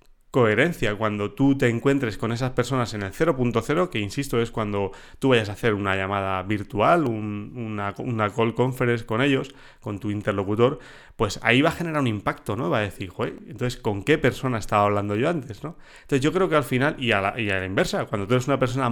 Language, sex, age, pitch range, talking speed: Spanish, male, 30-49, 110-140 Hz, 225 wpm